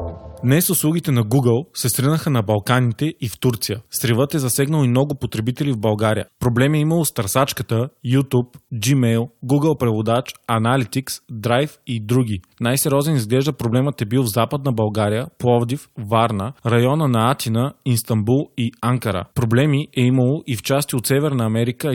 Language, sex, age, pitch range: Bulgarian, male, 20-39, 115-140 Hz